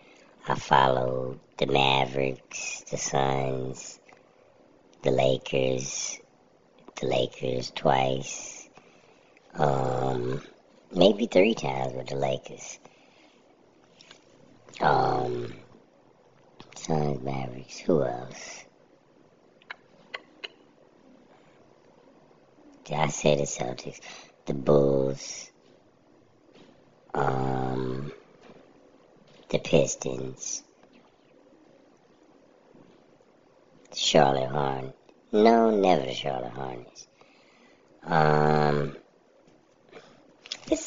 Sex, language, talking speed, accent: male, English, 60 wpm, American